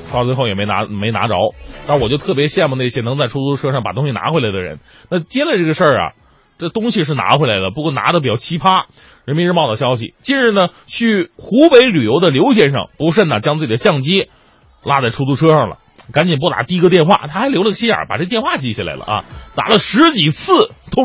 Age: 20-39